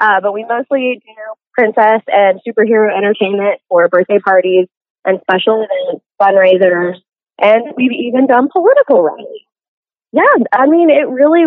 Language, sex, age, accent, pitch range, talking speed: English, female, 20-39, American, 185-250 Hz, 140 wpm